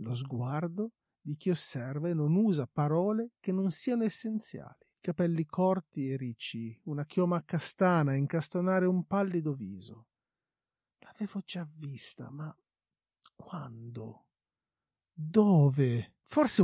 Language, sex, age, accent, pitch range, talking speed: Italian, male, 40-59, native, 130-205 Hz, 115 wpm